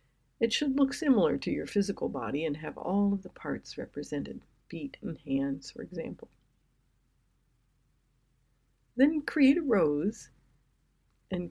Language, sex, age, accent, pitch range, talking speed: English, female, 60-79, American, 155-215 Hz, 130 wpm